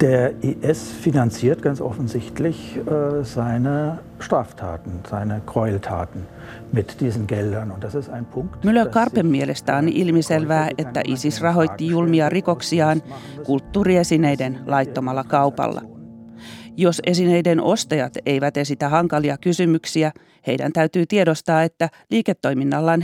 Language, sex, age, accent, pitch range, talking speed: Finnish, male, 40-59, native, 140-170 Hz, 90 wpm